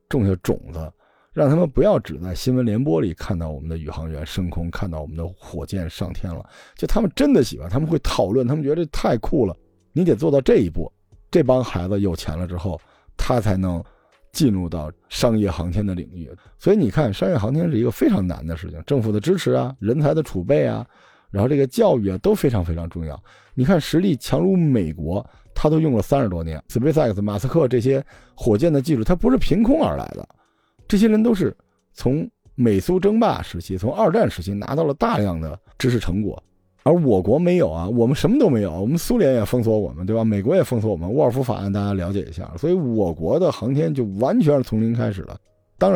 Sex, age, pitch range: male, 50-69, 90-135 Hz